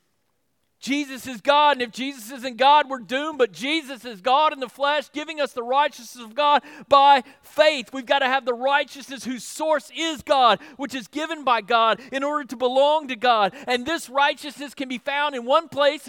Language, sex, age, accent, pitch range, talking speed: English, male, 40-59, American, 210-275 Hz, 205 wpm